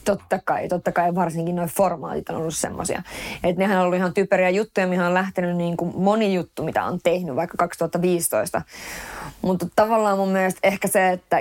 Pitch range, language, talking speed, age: 175-190 Hz, Finnish, 185 wpm, 20-39